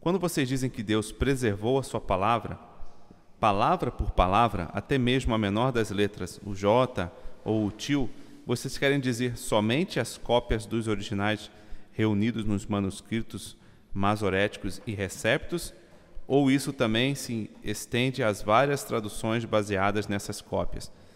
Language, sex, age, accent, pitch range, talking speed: Portuguese, male, 40-59, Brazilian, 100-125 Hz, 135 wpm